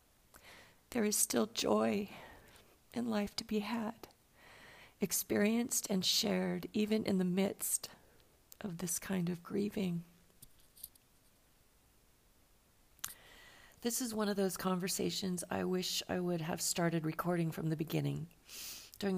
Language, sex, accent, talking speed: English, female, American, 120 wpm